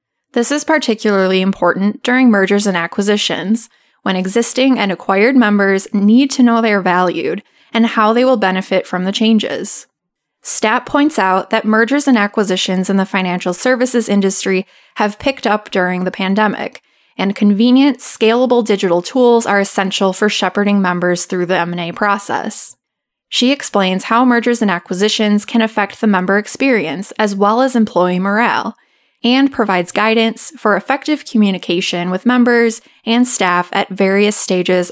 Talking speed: 150 wpm